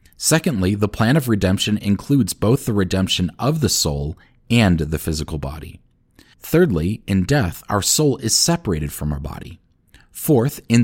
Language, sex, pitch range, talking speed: English, male, 85-120 Hz, 155 wpm